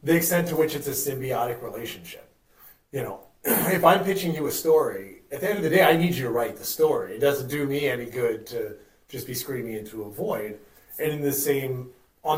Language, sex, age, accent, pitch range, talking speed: English, male, 30-49, American, 120-155 Hz, 230 wpm